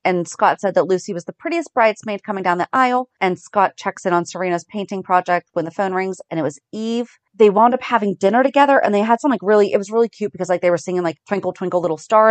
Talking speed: 270 wpm